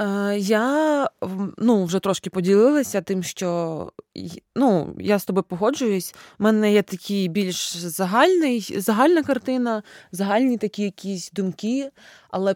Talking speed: 120 wpm